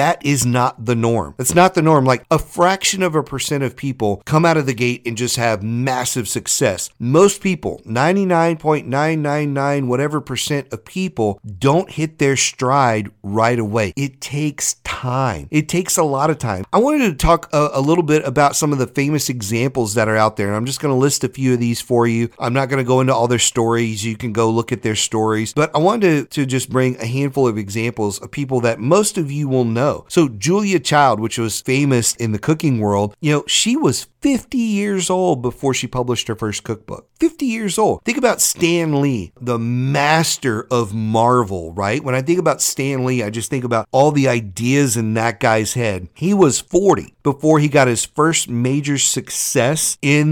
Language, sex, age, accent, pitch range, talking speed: English, male, 40-59, American, 120-155 Hz, 210 wpm